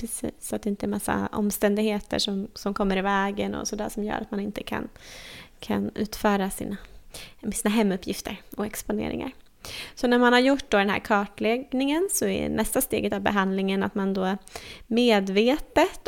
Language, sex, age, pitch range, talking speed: Swedish, female, 20-39, 195-245 Hz, 175 wpm